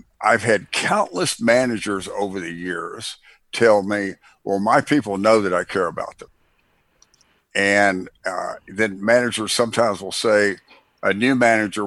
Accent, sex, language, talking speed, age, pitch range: American, male, English, 140 wpm, 60-79, 95-115 Hz